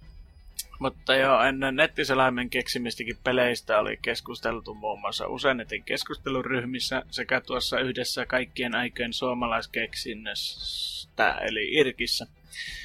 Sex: male